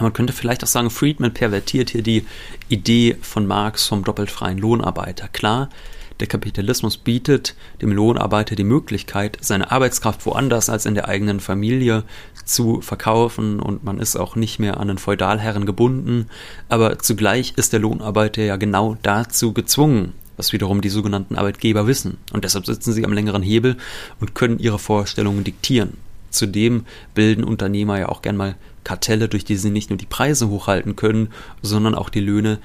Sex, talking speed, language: male, 170 wpm, German